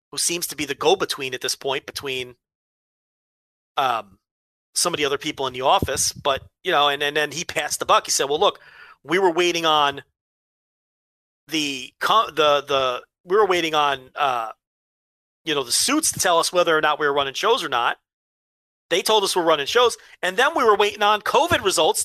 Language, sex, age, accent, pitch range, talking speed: English, male, 40-59, American, 135-180 Hz, 205 wpm